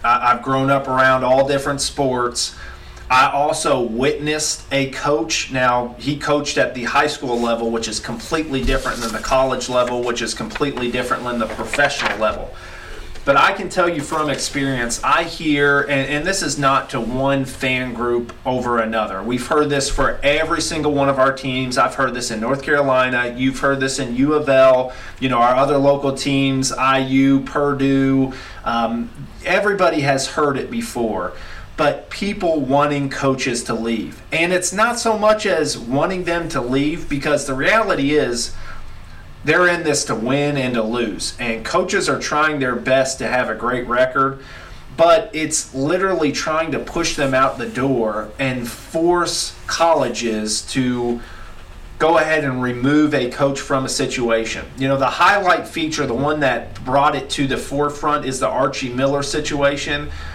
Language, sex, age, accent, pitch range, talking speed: English, male, 30-49, American, 120-145 Hz, 170 wpm